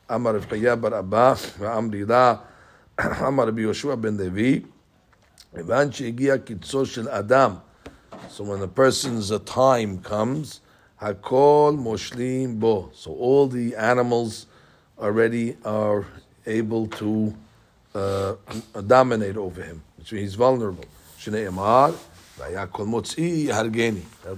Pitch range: 105-125 Hz